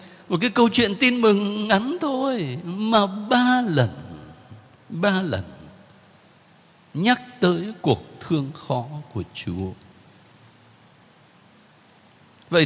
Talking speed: 100 wpm